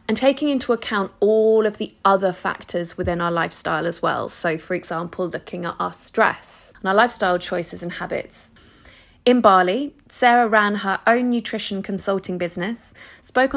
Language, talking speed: English, 165 wpm